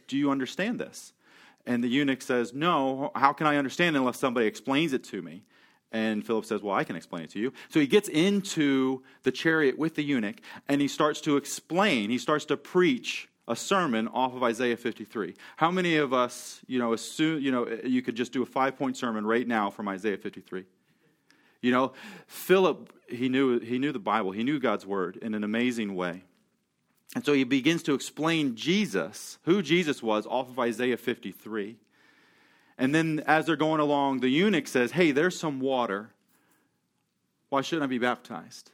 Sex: male